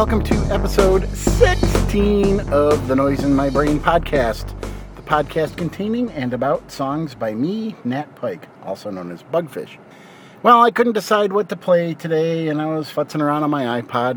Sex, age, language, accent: male, 40-59, English, American